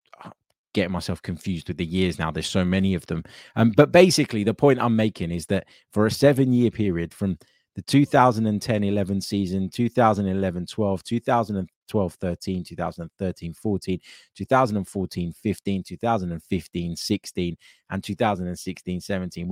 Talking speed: 110 wpm